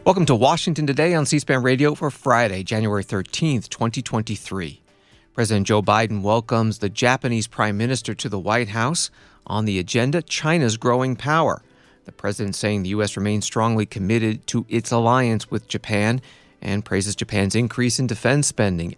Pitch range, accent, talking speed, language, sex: 100-130 Hz, American, 160 wpm, English, male